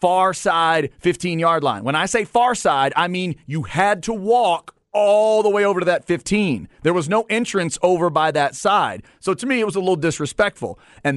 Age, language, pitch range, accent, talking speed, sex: 30-49, English, 140-190 Hz, American, 210 wpm, male